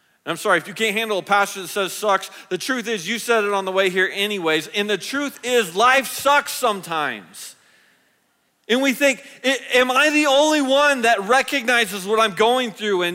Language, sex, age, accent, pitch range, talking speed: English, male, 40-59, American, 165-240 Hz, 195 wpm